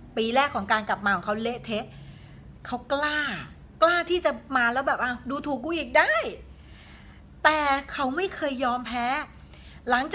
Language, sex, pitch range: Thai, female, 195-270 Hz